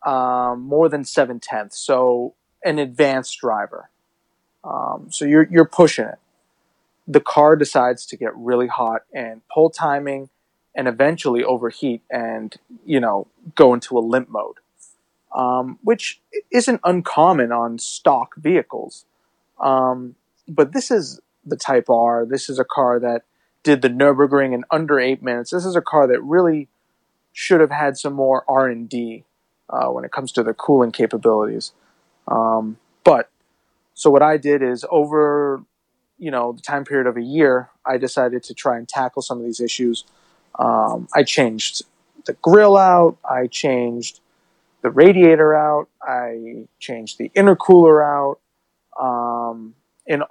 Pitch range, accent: 120-150 Hz, American